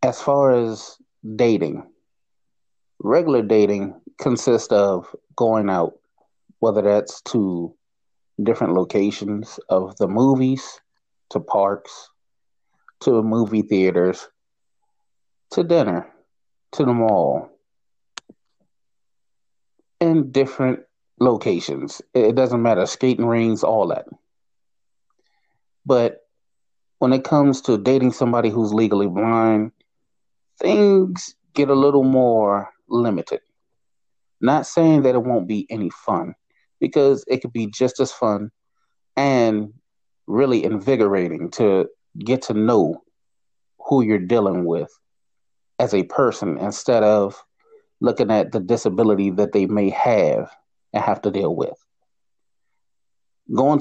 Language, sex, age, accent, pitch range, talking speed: English, male, 30-49, American, 105-135 Hz, 110 wpm